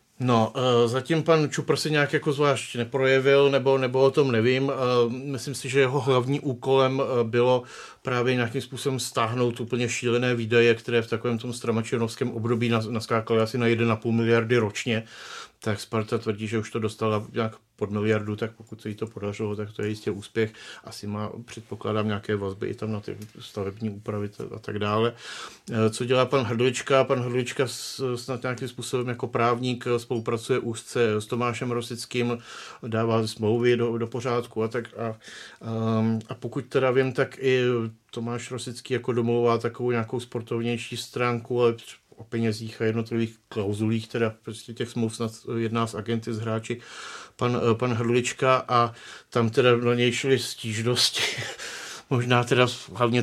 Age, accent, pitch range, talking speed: 40-59, native, 110-125 Hz, 160 wpm